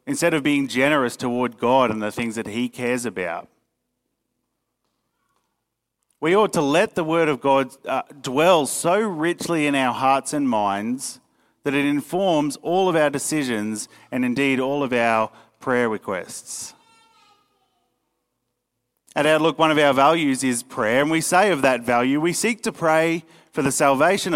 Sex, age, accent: male, 40-59, Australian